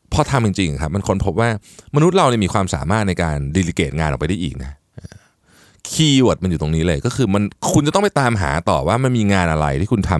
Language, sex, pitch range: Thai, male, 80-115 Hz